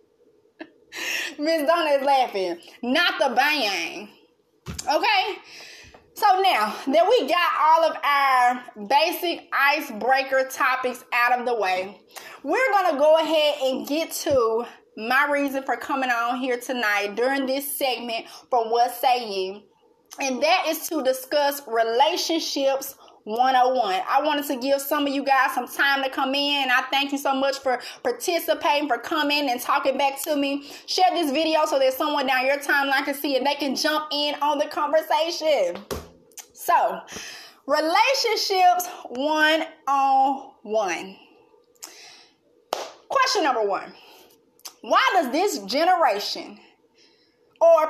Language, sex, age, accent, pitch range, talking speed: English, female, 20-39, American, 265-345 Hz, 140 wpm